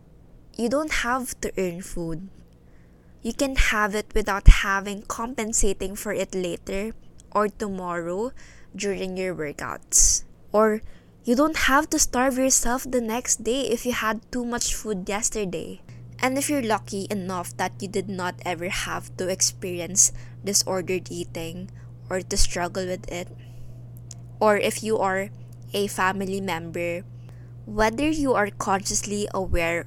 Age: 20-39